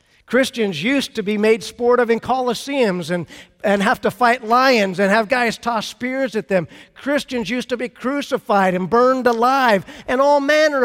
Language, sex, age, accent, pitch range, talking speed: English, male, 50-69, American, 175-230 Hz, 185 wpm